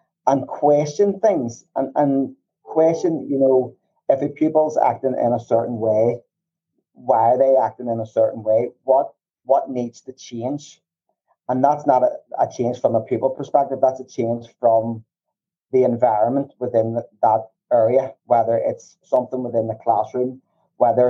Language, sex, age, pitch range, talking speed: English, male, 30-49, 115-135 Hz, 155 wpm